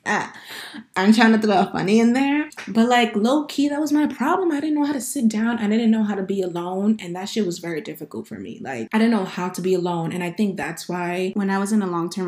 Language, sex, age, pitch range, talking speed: English, female, 20-39, 175-225 Hz, 270 wpm